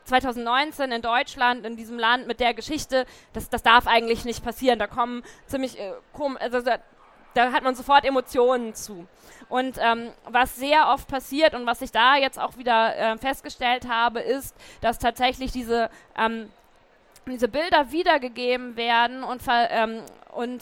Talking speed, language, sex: 160 wpm, German, female